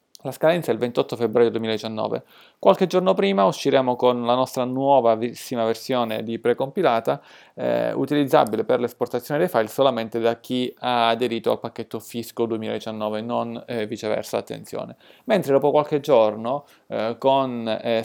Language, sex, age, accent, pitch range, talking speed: Italian, male, 30-49, native, 115-135 Hz, 145 wpm